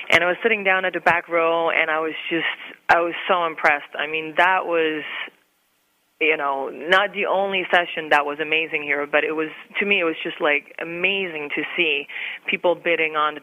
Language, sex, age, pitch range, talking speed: English, female, 30-49, 155-185 Hz, 205 wpm